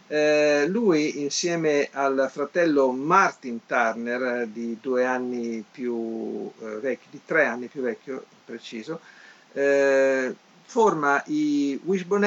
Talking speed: 110 wpm